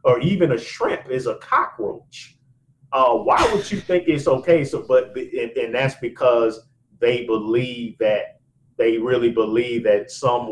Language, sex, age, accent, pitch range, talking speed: English, male, 40-59, American, 115-155 Hz, 165 wpm